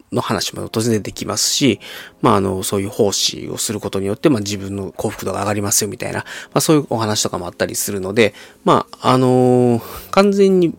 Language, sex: Japanese, male